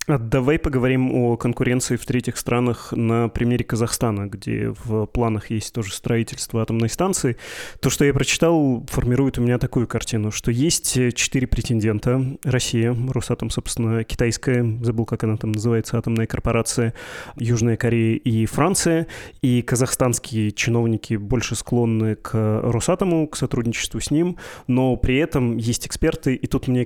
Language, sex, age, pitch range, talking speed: Russian, male, 20-39, 115-130 Hz, 145 wpm